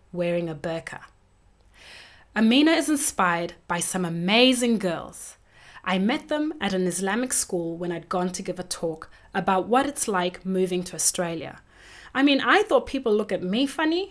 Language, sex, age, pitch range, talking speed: English, female, 20-39, 180-245 Hz, 170 wpm